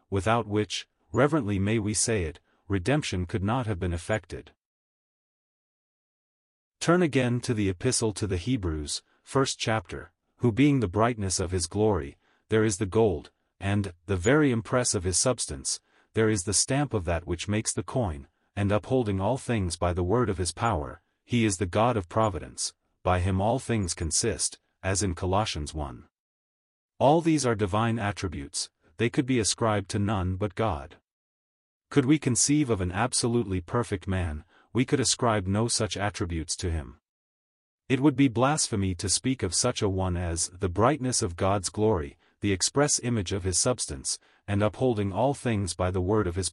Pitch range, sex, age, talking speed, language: 90-120 Hz, male, 40-59, 175 wpm, English